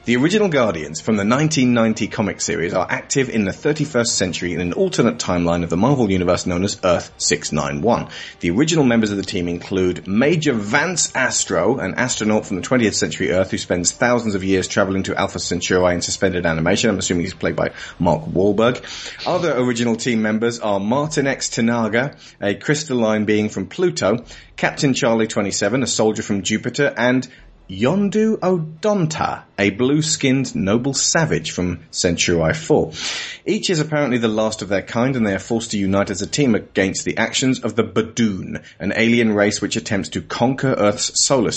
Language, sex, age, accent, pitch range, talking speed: English, male, 30-49, British, 95-125 Hz, 180 wpm